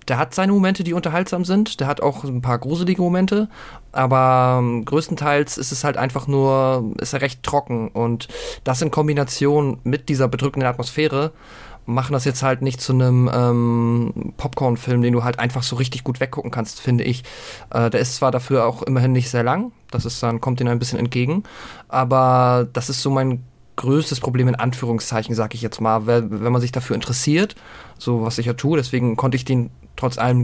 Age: 20-39